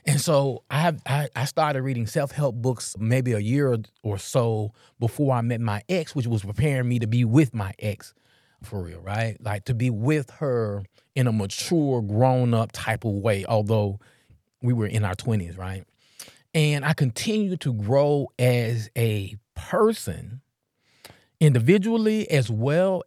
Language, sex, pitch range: English, male, 110-135 Hz